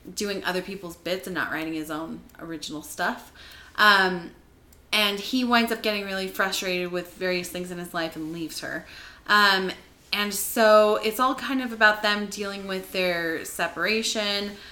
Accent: American